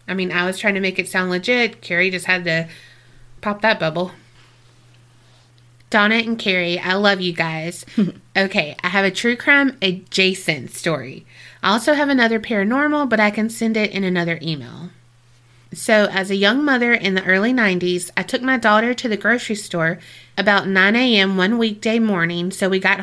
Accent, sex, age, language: American, female, 30-49, English